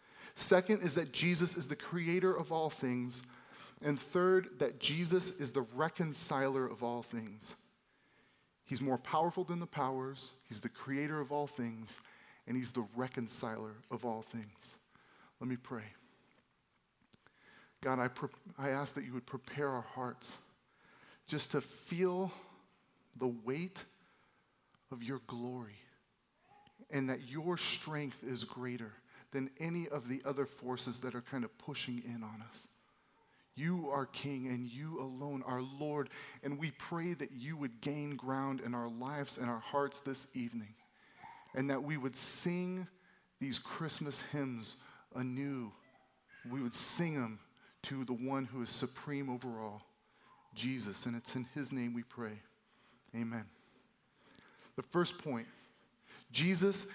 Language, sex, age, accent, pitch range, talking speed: English, male, 40-59, American, 125-150 Hz, 145 wpm